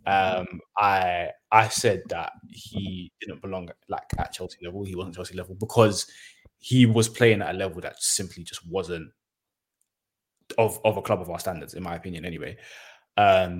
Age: 20-39